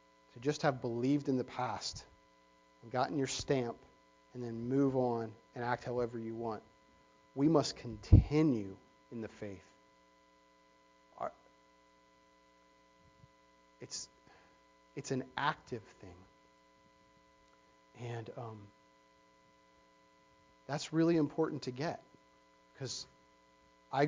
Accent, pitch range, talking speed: American, 115-145 Hz, 95 wpm